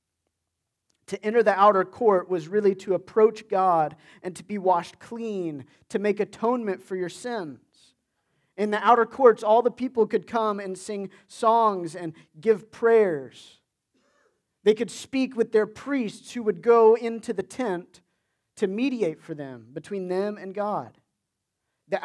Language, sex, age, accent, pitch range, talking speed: English, male, 40-59, American, 165-215 Hz, 155 wpm